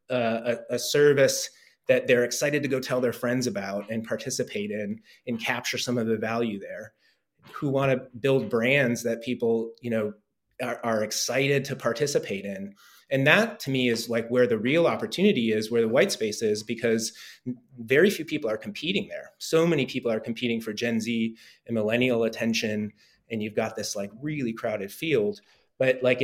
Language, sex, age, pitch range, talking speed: English, male, 30-49, 115-135 Hz, 185 wpm